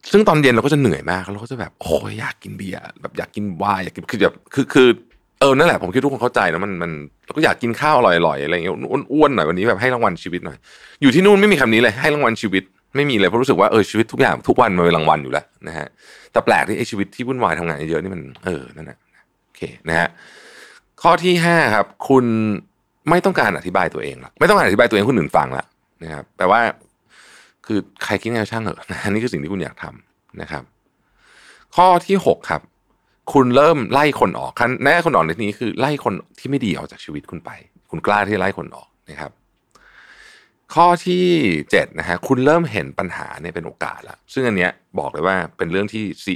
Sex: male